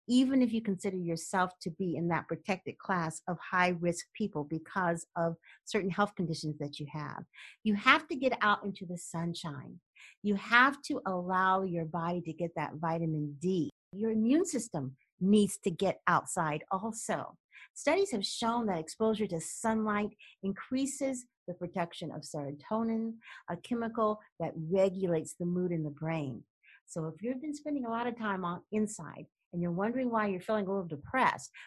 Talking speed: 170 wpm